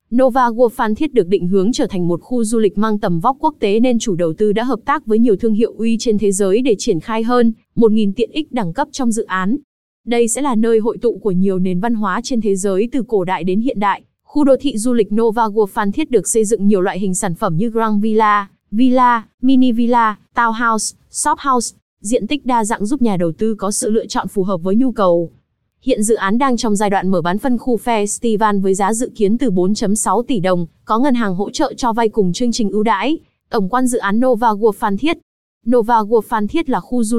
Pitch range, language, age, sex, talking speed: 205-245 Hz, Vietnamese, 20-39, female, 250 wpm